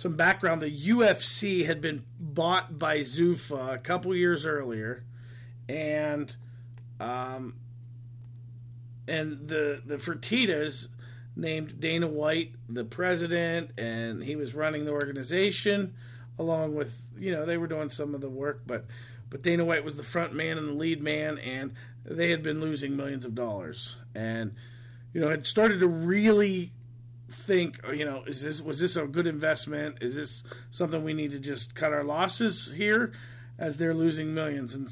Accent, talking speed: American, 160 wpm